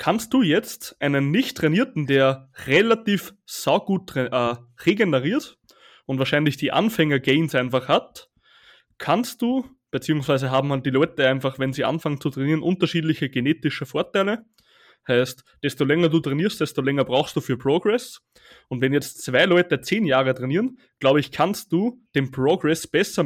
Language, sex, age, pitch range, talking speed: German, male, 20-39, 135-200 Hz, 155 wpm